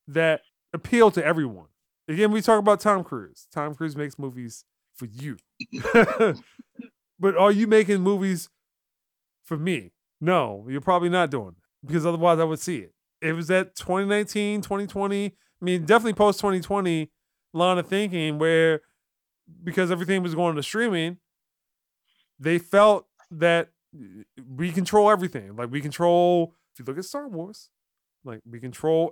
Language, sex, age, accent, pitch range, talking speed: English, male, 30-49, American, 155-195 Hz, 150 wpm